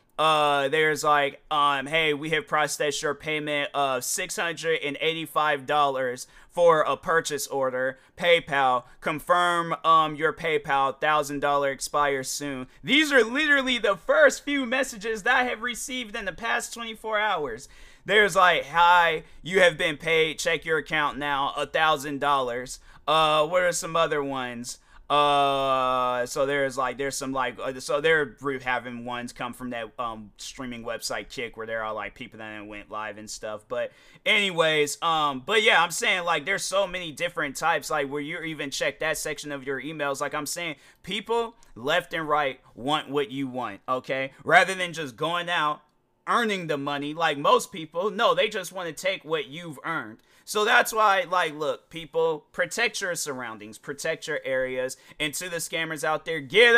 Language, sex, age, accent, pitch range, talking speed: English, male, 30-49, American, 140-180 Hz, 175 wpm